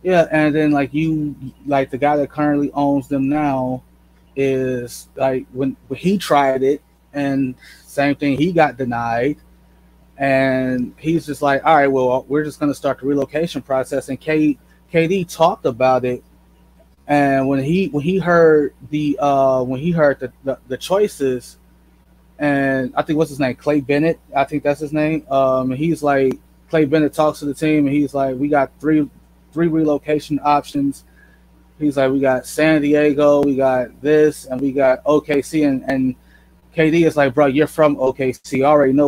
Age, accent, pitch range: 20-39, American, 130-150 Hz